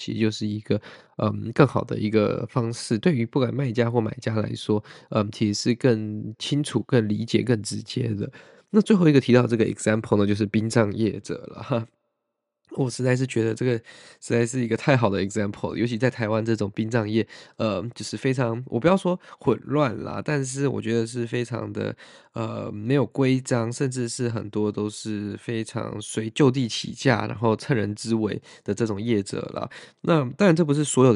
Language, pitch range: Chinese, 110-130 Hz